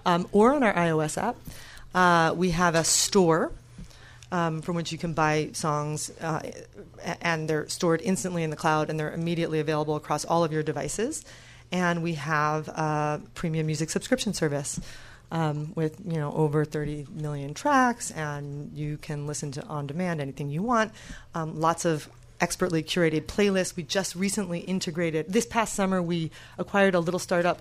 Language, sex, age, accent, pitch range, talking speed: English, female, 30-49, American, 155-185 Hz, 170 wpm